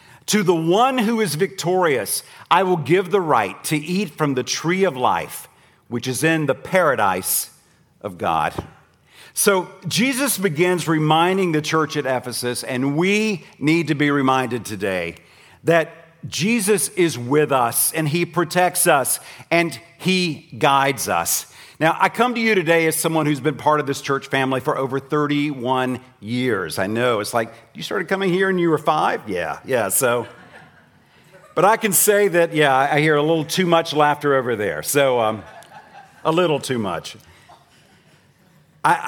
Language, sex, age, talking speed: English, male, 50-69, 165 wpm